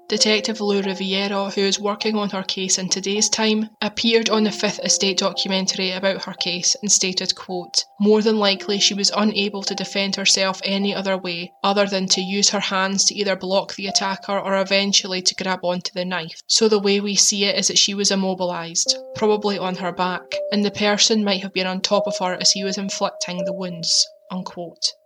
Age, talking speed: 20-39, 205 wpm